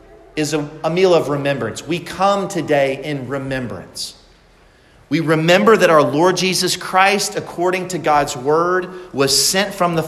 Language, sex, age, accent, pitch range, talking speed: English, male, 40-59, American, 140-180 Hz, 150 wpm